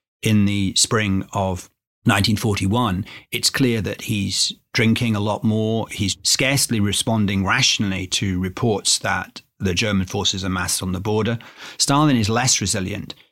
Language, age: English, 40-59